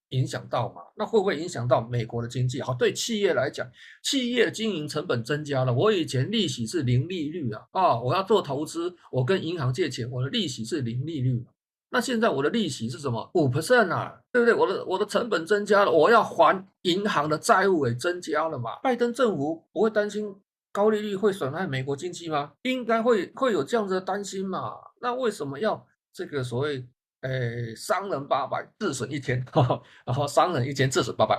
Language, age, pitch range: Chinese, 50-69, 125-215 Hz